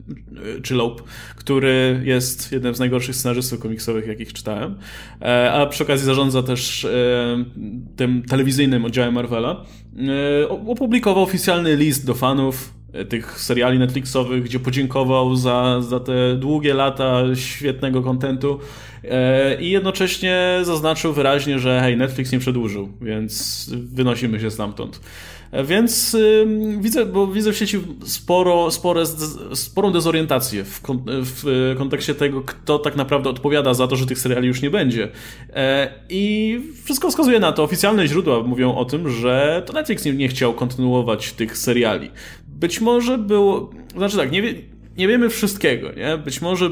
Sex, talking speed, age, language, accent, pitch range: male, 130 wpm, 20-39, Polish, native, 125-165 Hz